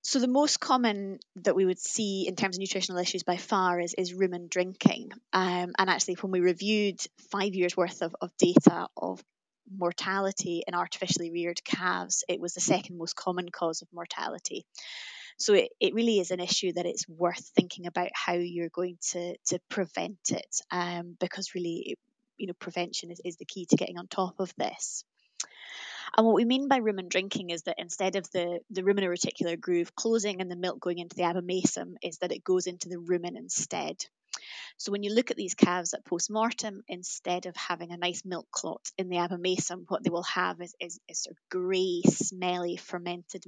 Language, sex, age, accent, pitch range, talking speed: English, female, 20-39, British, 175-195 Hz, 200 wpm